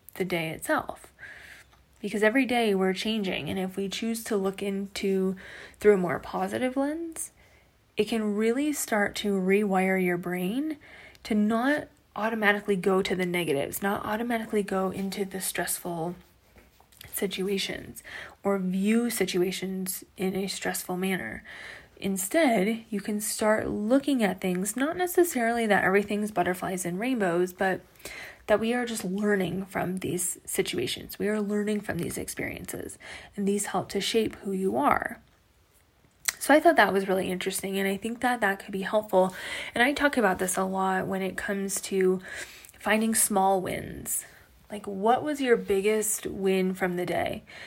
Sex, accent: female, American